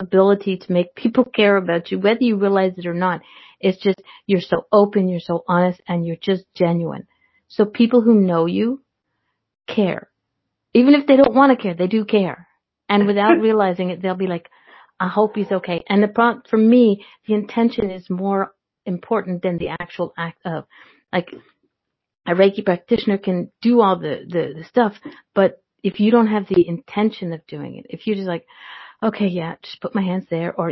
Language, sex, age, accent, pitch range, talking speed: English, female, 50-69, American, 180-215 Hz, 195 wpm